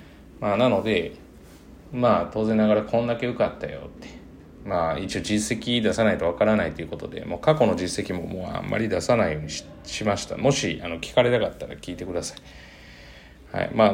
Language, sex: Japanese, male